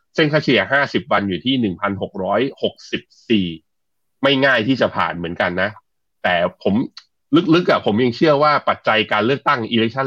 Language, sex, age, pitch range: Thai, male, 20-39, 100-135 Hz